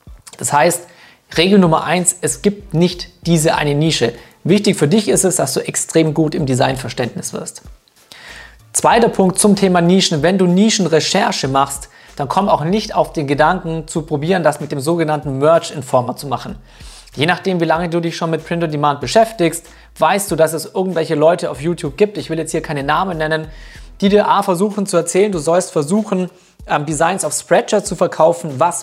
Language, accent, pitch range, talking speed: German, German, 155-185 Hz, 185 wpm